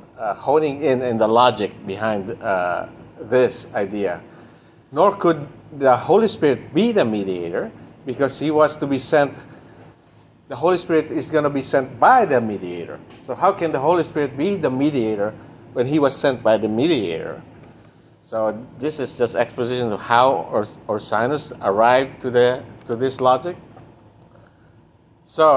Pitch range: 115-145 Hz